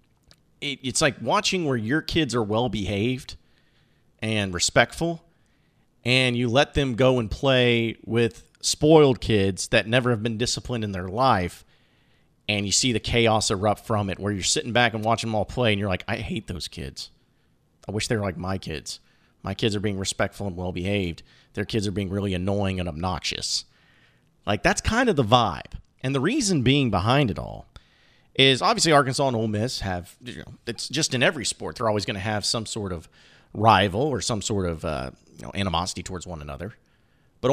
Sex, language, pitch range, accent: male, English, 100-130 Hz, American